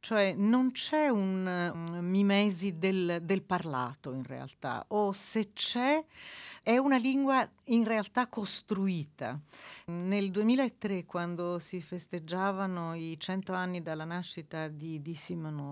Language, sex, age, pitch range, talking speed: Italian, female, 40-59, 160-200 Hz, 125 wpm